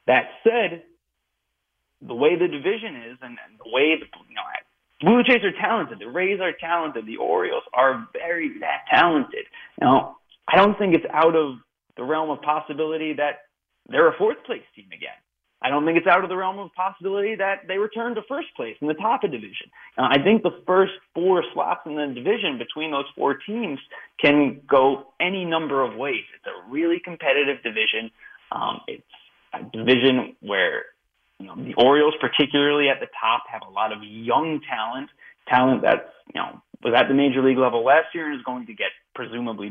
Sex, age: male, 30-49